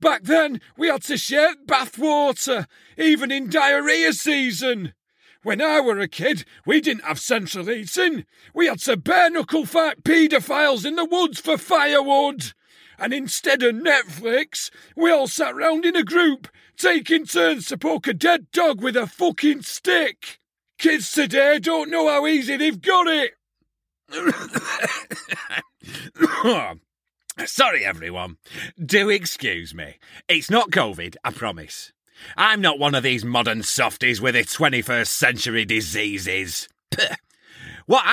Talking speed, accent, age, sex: 140 wpm, British, 40-59, male